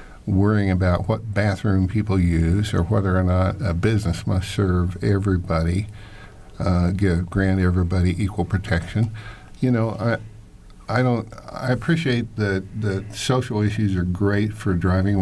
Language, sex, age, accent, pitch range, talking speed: English, male, 50-69, American, 95-110 Hz, 140 wpm